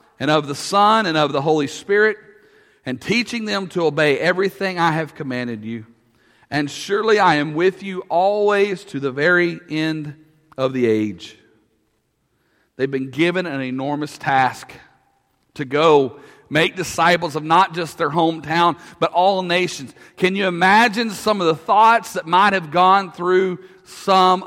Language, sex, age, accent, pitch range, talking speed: English, male, 40-59, American, 160-220 Hz, 155 wpm